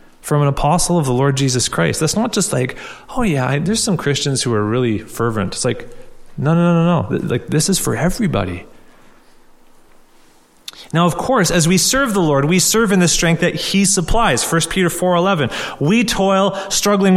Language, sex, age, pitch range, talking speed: English, male, 30-49, 125-180 Hz, 200 wpm